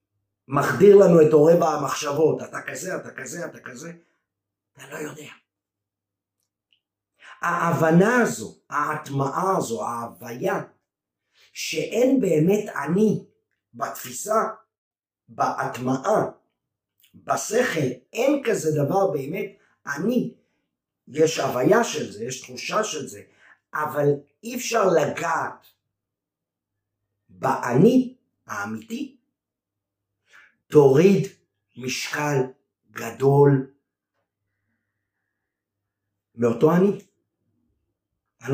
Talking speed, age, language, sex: 80 wpm, 50-69, Hebrew, male